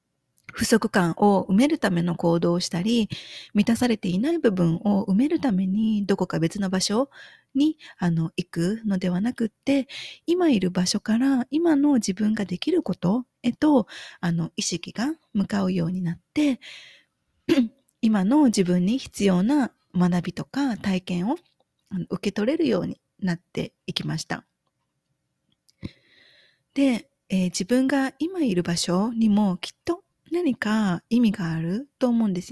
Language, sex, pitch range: Japanese, female, 180-255 Hz